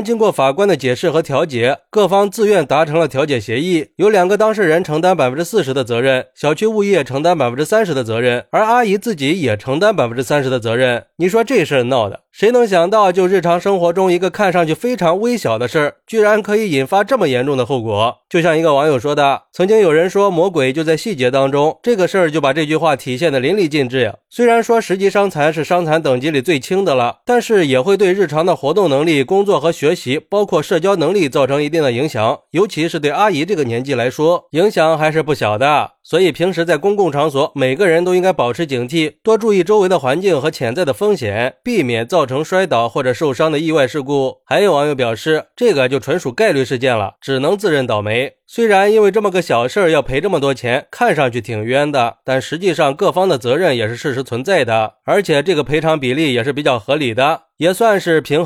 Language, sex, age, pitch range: Chinese, male, 20-39, 135-200 Hz